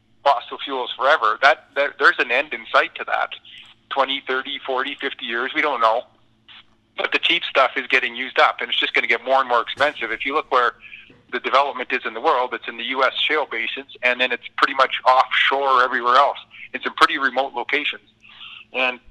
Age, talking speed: 30-49, 210 wpm